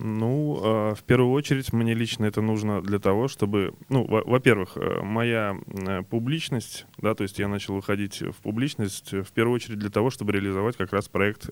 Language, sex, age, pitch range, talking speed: Russian, male, 20-39, 100-125 Hz, 170 wpm